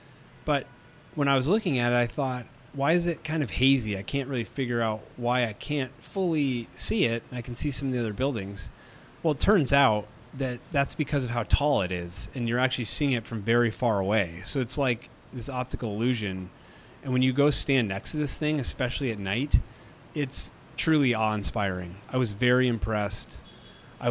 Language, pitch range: English, 110-130 Hz